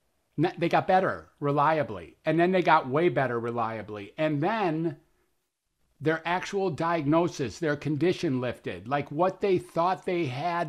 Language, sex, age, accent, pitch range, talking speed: English, male, 50-69, American, 150-180 Hz, 140 wpm